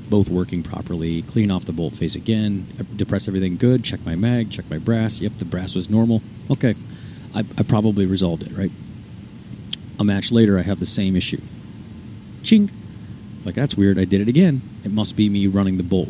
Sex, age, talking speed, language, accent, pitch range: male, 30-49, 200 wpm, English, American, 100-120 Hz